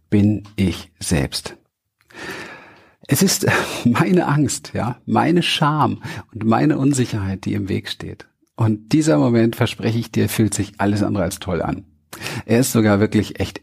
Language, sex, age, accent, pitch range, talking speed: German, male, 50-69, German, 100-120 Hz, 155 wpm